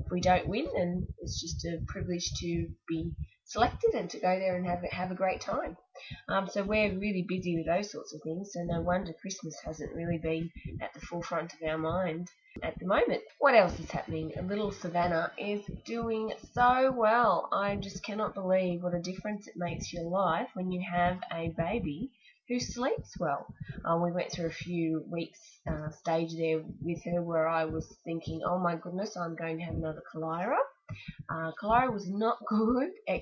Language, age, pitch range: English, 20-39, 165-195 Hz